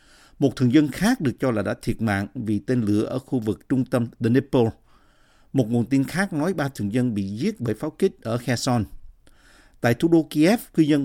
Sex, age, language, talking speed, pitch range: male, 50-69, Vietnamese, 225 wpm, 110-140 Hz